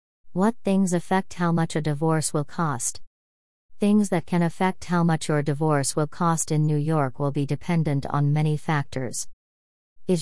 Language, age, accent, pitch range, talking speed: English, 40-59, American, 145-180 Hz, 170 wpm